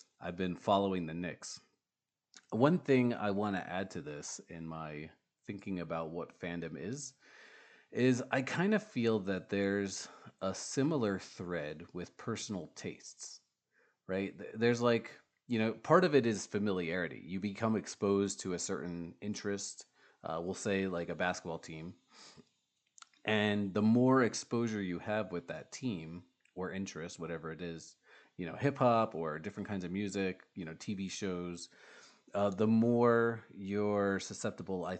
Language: English